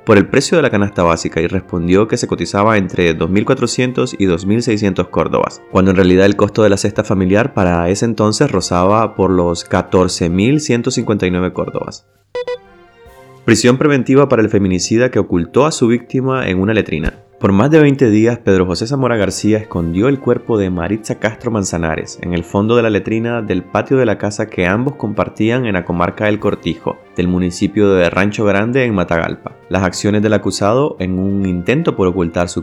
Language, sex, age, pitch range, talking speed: Spanish, male, 20-39, 90-115 Hz, 180 wpm